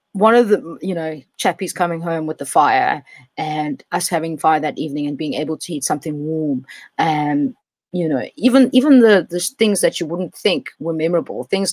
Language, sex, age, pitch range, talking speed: English, female, 20-39, 160-195 Hz, 200 wpm